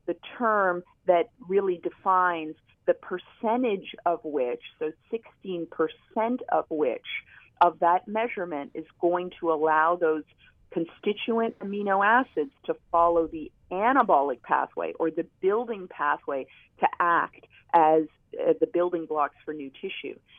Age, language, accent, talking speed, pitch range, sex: 40-59, English, American, 125 wpm, 160-210 Hz, female